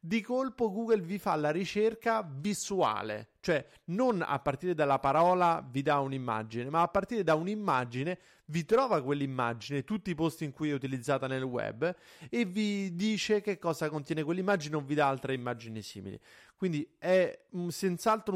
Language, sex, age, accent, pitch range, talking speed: Italian, male, 30-49, native, 145-205 Hz, 165 wpm